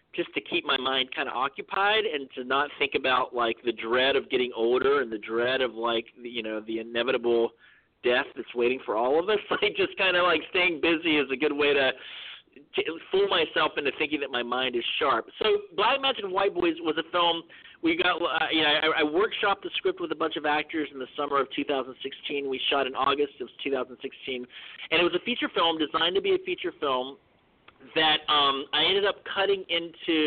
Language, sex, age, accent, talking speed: English, male, 40-59, American, 220 wpm